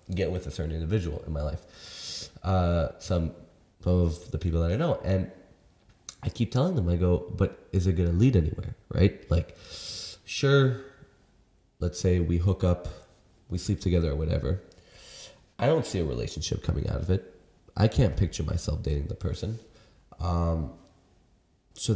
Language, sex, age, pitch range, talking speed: English, male, 20-39, 85-110 Hz, 165 wpm